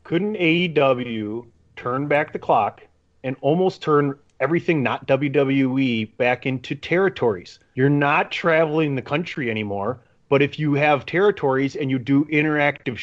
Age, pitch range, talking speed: 30-49, 125-155 Hz, 140 wpm